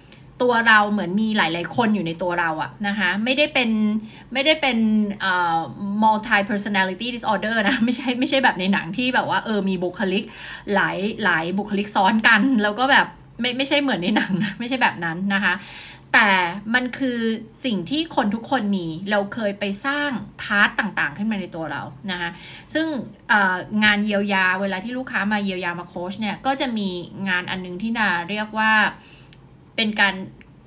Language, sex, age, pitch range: Thai, female, 20-39, 185-230 Hz